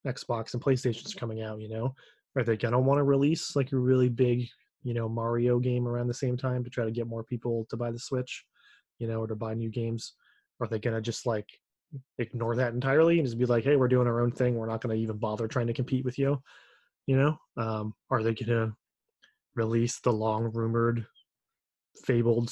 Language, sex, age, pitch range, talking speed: English, male, 20-39, 115-130 Hz, 215 wpm